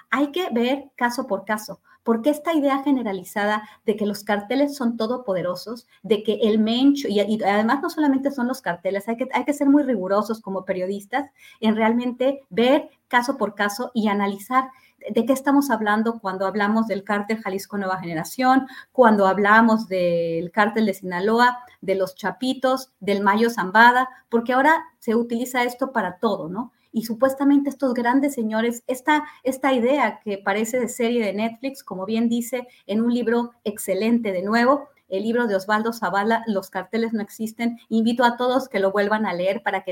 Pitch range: 200-255 Hz